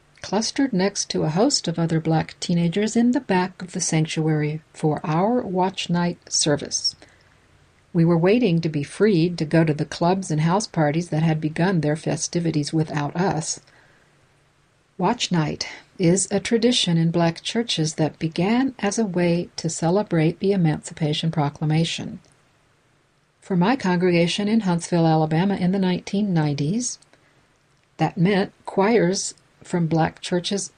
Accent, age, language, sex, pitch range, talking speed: American, 60-79, English, female, 155-195 Hz, 145 wpm